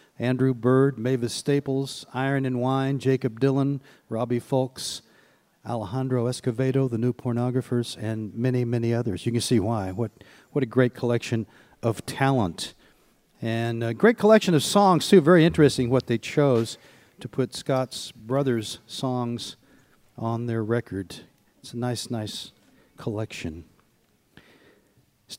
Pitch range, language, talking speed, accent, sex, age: 115-155 Hz, English, 135 wpm, American, male, 50-69